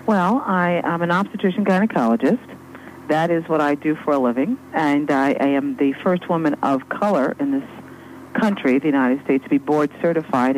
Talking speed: 185 wpm